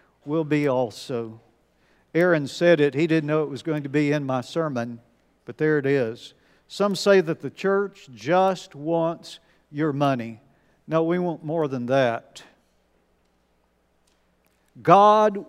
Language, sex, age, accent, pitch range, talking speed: English, male, 50-69, American, 125-185 Hz, 145 wpm